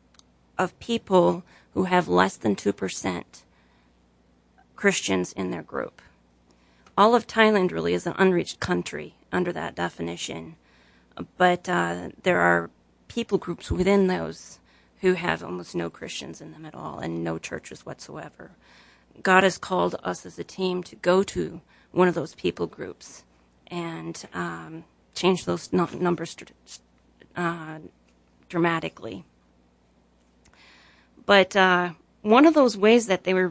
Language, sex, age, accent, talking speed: English, female, 30-49, American, 135 wpm